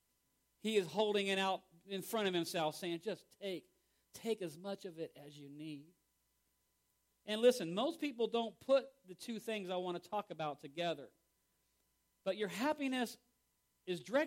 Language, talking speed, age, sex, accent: English, 165 wpm, 40-59, male, American